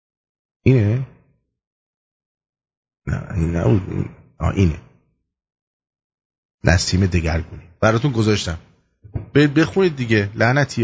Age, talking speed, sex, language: 30-49, 65 wpm, male, English